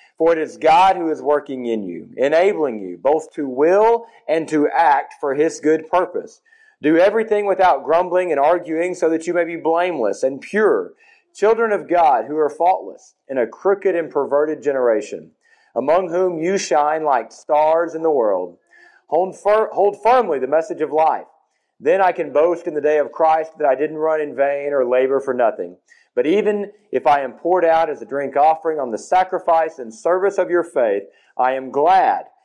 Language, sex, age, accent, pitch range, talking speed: English, male, 40-59, American, 150-200 Hz, 190 wpm